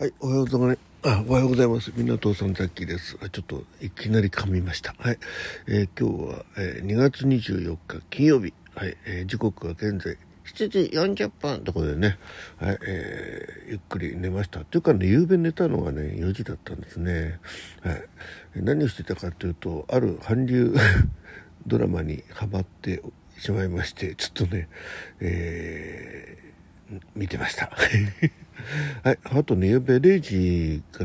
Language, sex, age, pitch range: Japanese, male, 60-79, 85-110 Hz